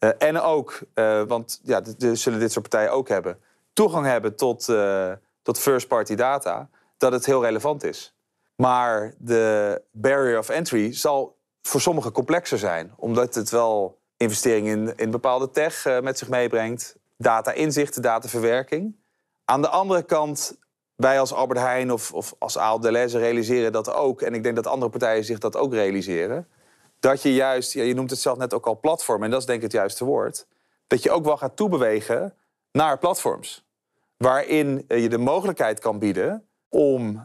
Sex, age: male, 30-49